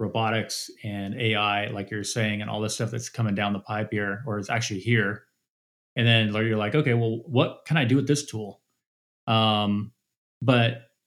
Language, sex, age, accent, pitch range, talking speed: English, male, 30-49, American, 105-125 Hz, 190 wpm